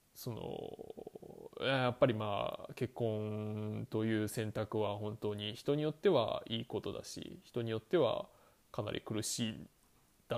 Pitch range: 110-165 Hz